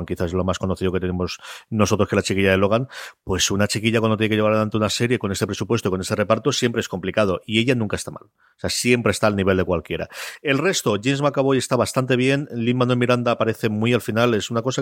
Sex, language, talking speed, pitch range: male, Spanish, 250 wpm, 105-125 Hz